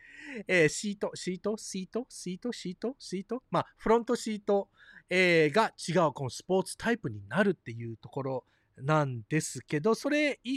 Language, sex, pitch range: Japanese, male, 145-220 Hz